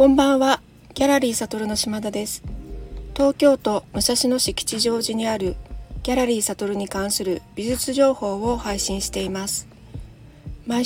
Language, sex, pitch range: Japanese, female, 185-235 Hz